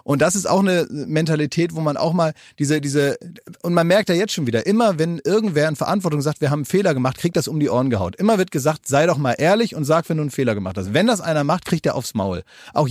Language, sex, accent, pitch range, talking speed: German, male, German, 135-175 Hz, 285 wpm